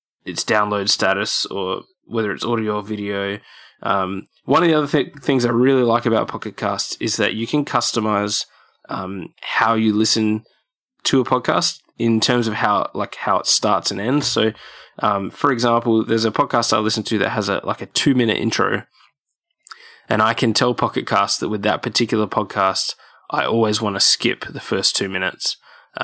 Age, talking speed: 10-29, 185 wpm